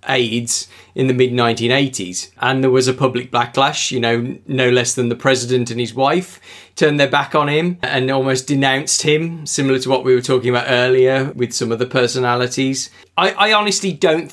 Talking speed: 195 wpm